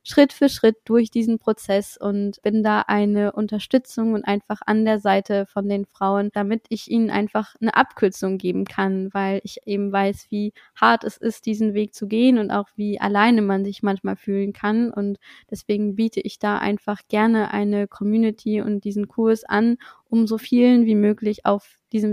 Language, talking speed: German, 185 wpm